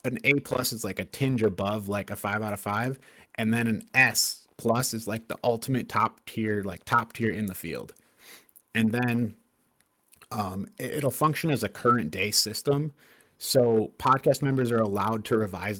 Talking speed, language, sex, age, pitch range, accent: 180 wpm, English, male, 30-49, 105-125 Hz, American